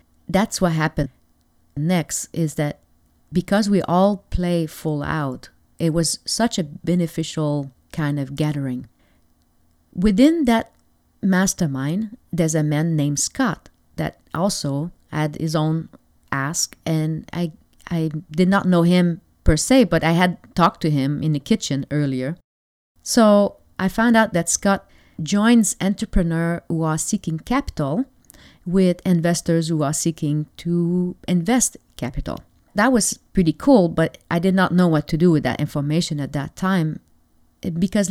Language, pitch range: English, 150-195 Hz